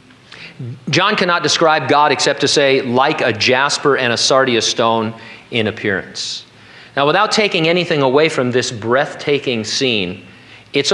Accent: American